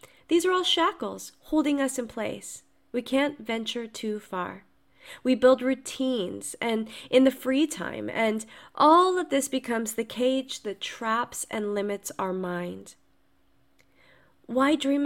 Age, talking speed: 30-49, 145 wpm